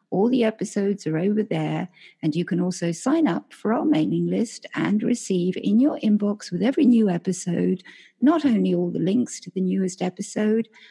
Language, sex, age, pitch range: English, female, 50-69, 170-230 Hz